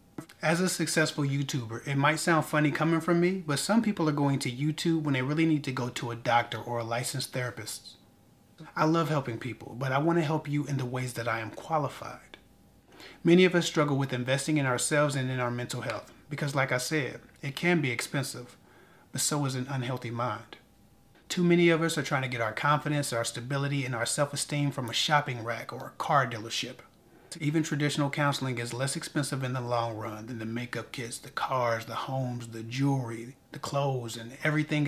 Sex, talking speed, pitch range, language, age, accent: male, 210 wpm, 120-150 Hz, English, 30-49, American